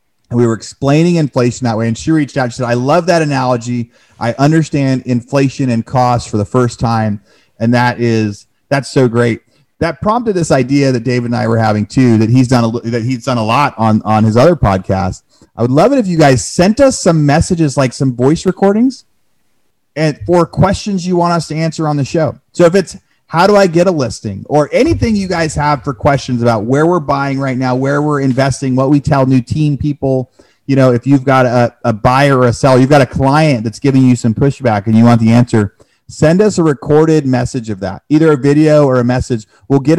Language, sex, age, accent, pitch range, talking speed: English, male, 30-49, American, 115-150 Hz, 230 wpm